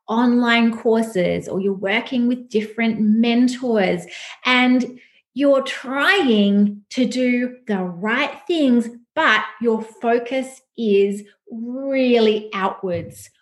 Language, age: English, 30-49